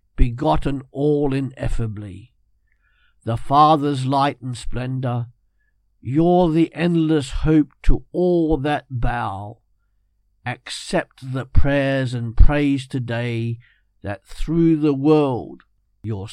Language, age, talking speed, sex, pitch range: English, 50-69, 100 wpm, male, 120-155 Hz